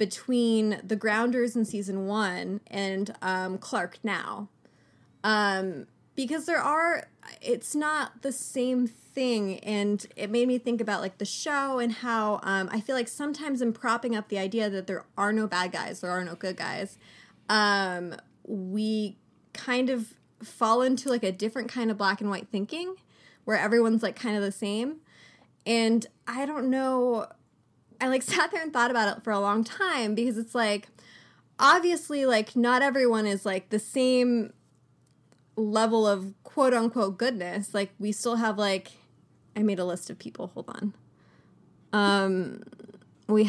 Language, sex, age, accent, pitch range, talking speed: English, female, 20-39, American, 200-245 Hz, 165 wpm